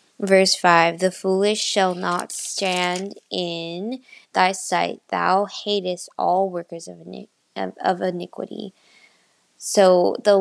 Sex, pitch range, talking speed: female, 170-195 Hz, 115 wpm